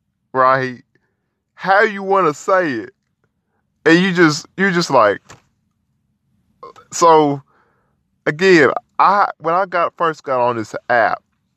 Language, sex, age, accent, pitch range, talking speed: English, male, 20-39, American, 115-145 Hz, 125 wpm